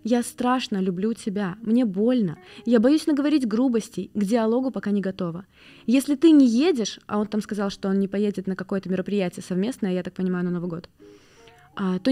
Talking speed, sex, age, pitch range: 190 wpm, female, 20-39, 185-250 Hz